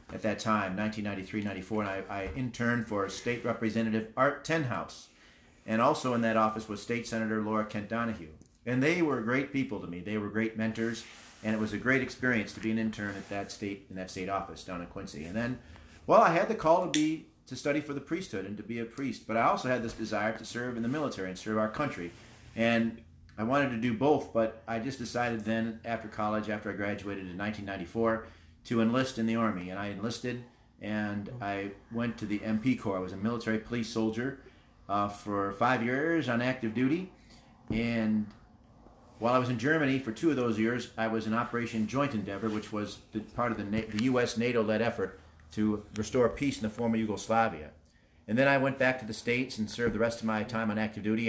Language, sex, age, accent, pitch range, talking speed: English, male, 40-59, American, 105-120 Hz, 220 wpm